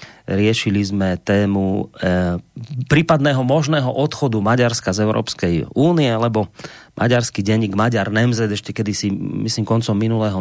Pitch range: 110-140 Hz